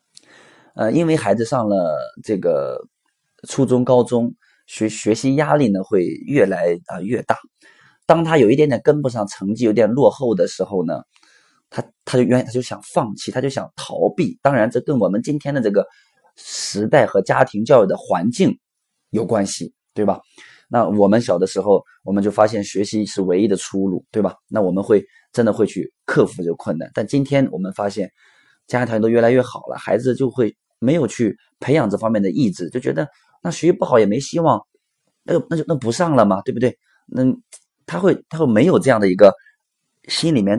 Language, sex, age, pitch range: Chinese, male, 20-39, 100-155 Hz